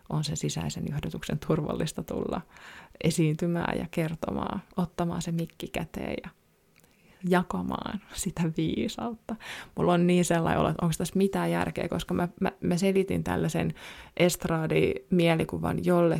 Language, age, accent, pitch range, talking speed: Finnish, 20-39, native, 165-190 Hz, 120 wpm